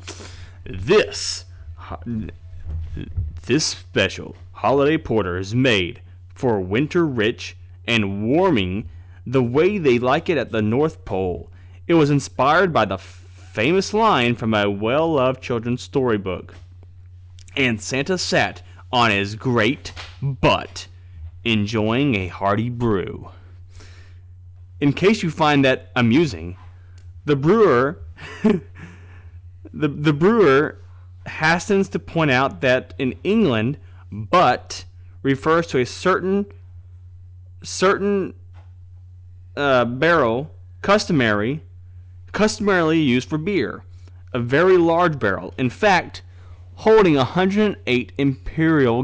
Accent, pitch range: American, 90-135 Hz